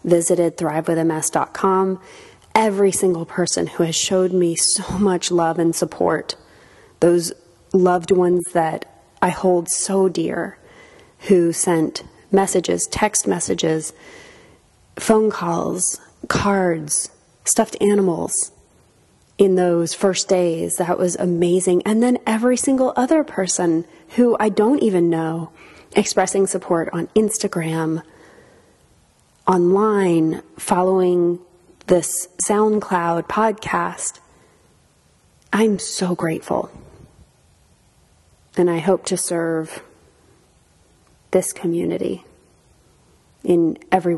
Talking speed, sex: 95 wpm, female